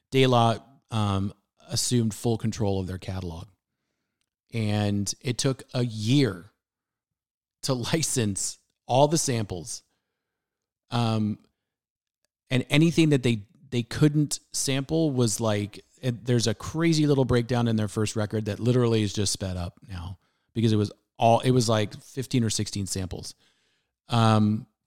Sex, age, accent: male, 30-49, American